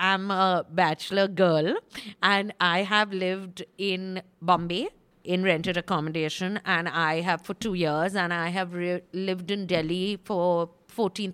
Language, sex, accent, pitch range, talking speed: English, female, Indian, 175-215 Hz, 145 wpm